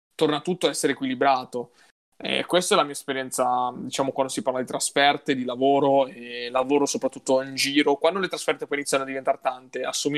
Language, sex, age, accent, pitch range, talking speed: Italian, male, 20-39, native, 130-160 Hz, 195 wpm